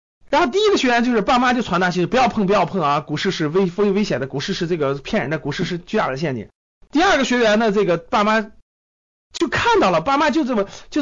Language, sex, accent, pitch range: Chinese, male, native, 150-235 Hz